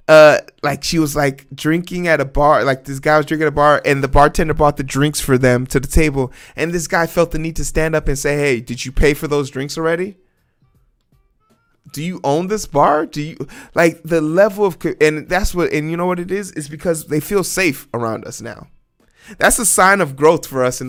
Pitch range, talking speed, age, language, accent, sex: 135-165 Hz, 240 wpm, 20-39, English, American, male